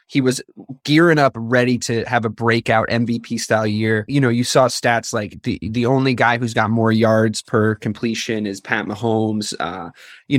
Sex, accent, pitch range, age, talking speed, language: male, American, 110-135 Hz, 20-39, 200 wpm, English